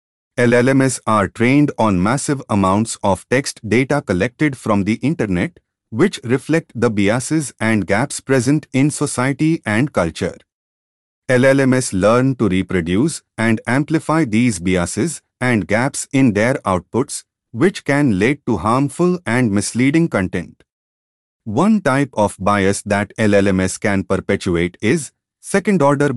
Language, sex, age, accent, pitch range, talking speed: English, male, 30-49, Indian, 100-140 Hz, 125 wpm